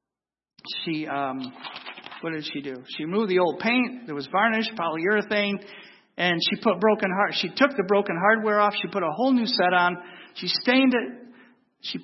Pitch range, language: 155-205 Hz, English